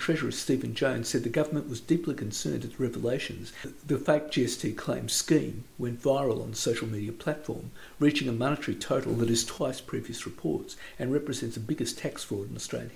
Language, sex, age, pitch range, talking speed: English, male, 50-69, 115-150 Hz, 190 wpm